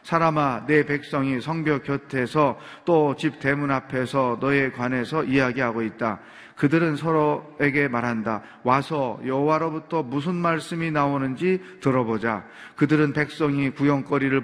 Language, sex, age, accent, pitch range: Korean, male, 30-49, native, 120-160 Hz